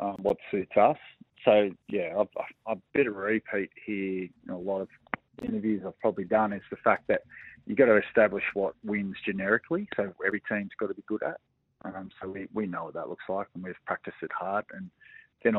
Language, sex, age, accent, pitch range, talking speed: English, male, 20-39, Australian, 95-105 Hz, 210 wpm